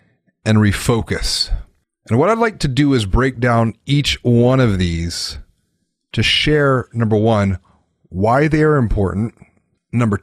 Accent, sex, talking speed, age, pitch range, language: American, male, 135 wpm, 30-49, 105-150 Hz, English